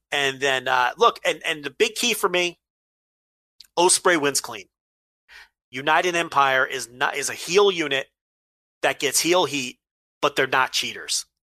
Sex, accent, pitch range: male, American, 135-170 Hz